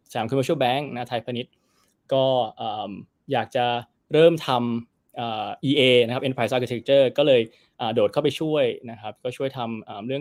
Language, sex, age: Thai, male, 20-39